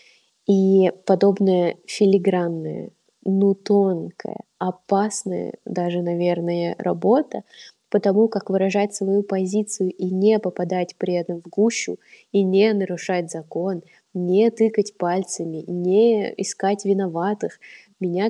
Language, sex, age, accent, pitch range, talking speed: Russian, female, 20-39, native, 175-200 Hz, 105 wpm